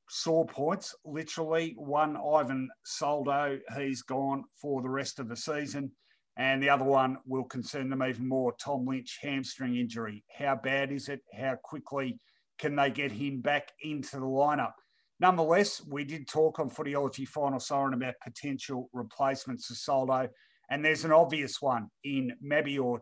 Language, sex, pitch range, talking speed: English, male, 130-150 Hz, 160 wpm